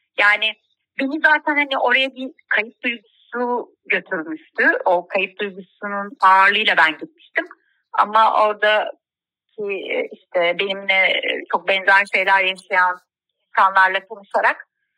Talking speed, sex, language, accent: 100 wpm, female, Turkish, native